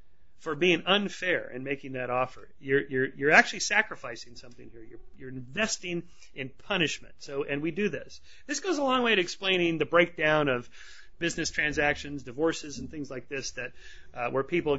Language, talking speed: English, 185 wpm